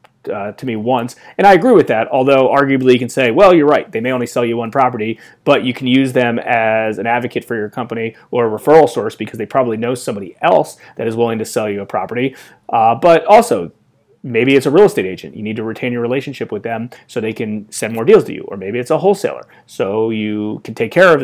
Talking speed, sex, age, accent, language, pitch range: 250 wpm, male, 30-49, American, English, 115-140 Hz